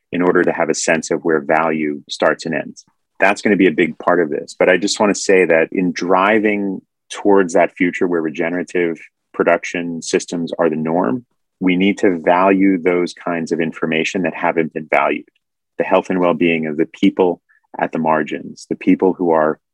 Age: 30-49